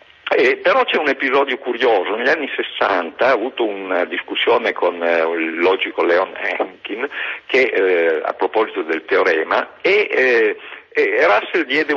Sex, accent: male, native